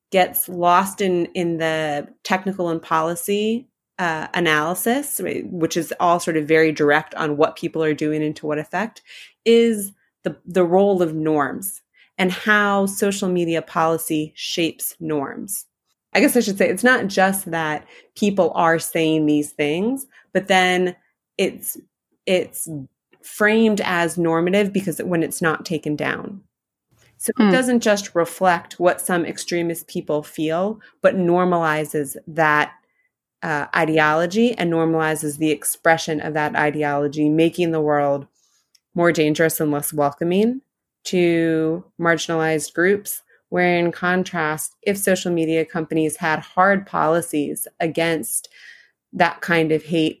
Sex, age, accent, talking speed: female, 30-49, American, 135 wpm